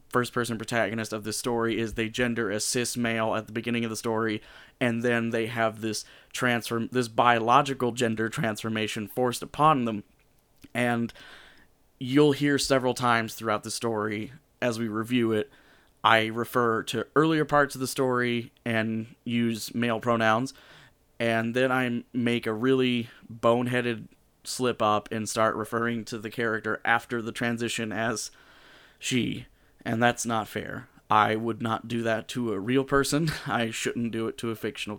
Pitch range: 110-125 Hz